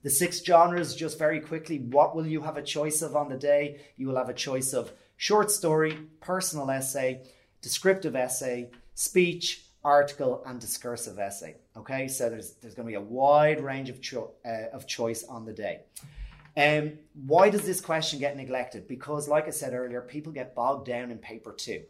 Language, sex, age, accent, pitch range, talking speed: English, male, 30-49, Irish, 125-155 Hz, 195 wpm